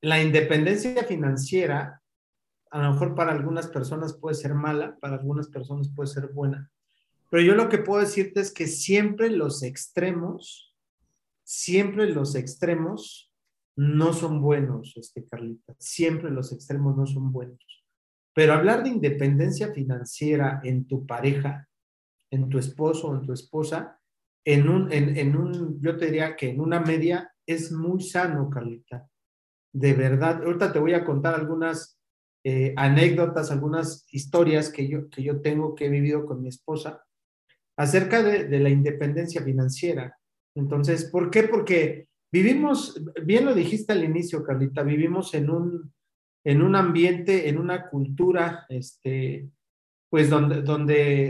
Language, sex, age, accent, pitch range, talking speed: Spanish, male, 40-59, Mexican, 140-170 Hz, 140 wpm